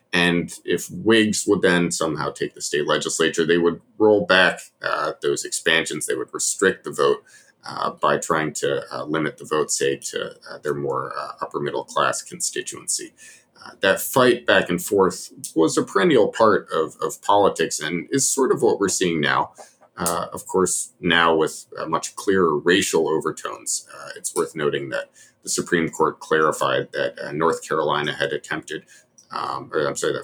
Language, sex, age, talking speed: English, male, 30-49, 175 wpm